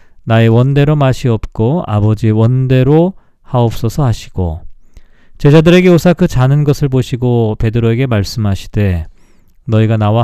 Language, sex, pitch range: Korean, male, 110-150 Hz